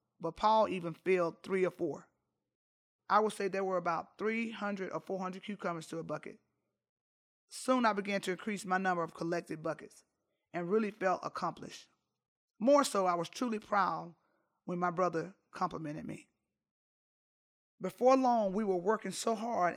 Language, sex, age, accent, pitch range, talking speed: English, male, 30-49, American, 170-210 Hz, 160 wpm